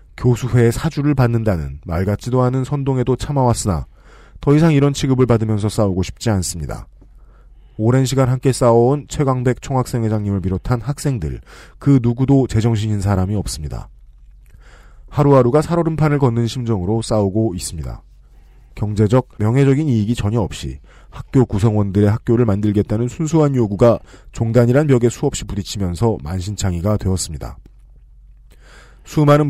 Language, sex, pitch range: Korean, male, 95-130 Hz